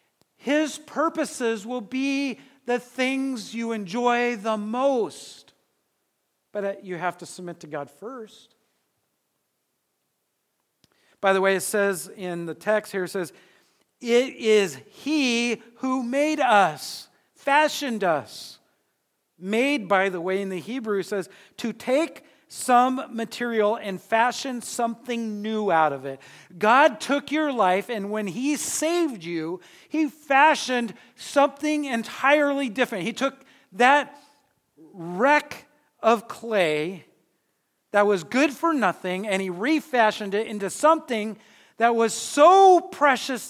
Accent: American